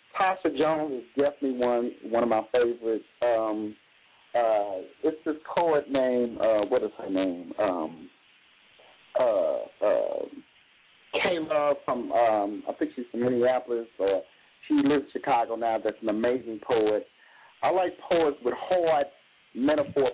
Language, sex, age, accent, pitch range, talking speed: English, male, 40-59, American, 125-190 Hz, 140 wpm